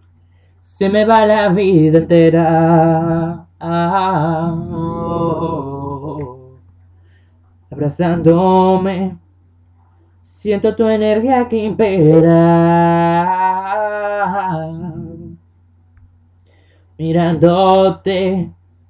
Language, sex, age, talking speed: English, male, 20-39, 40 wpm